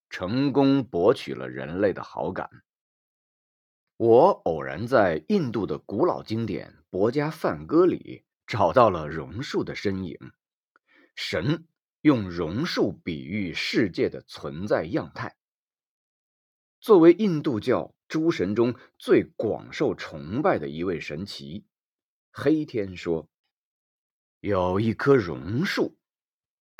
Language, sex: Chinese, male